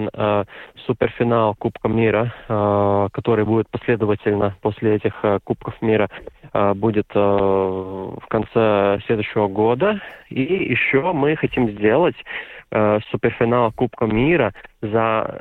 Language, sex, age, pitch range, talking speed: Russian, male, 20-39, 105-125 Hz, 95 wpm